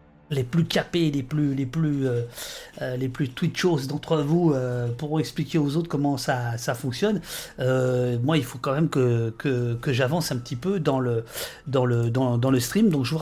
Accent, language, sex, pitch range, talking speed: French, French, male, 125-155 Hz, 210 wpm